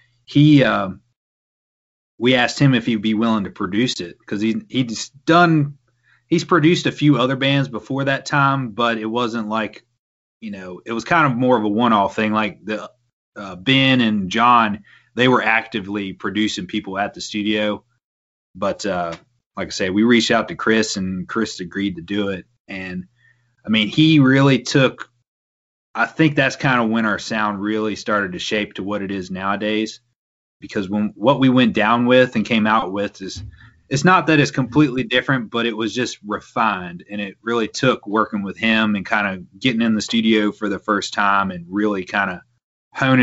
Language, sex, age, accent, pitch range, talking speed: English, male, 30-49, American, 105-125 Hz, 195 wpm